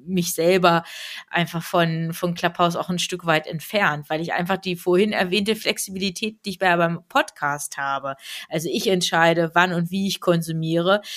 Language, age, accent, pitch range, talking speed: German, 20-39, German, 170-200 Hz, 170 wpm